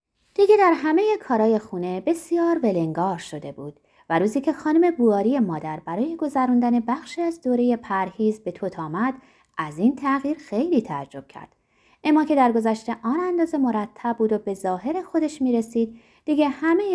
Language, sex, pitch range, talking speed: Persian, female, 195-300 Hz, 165 wpm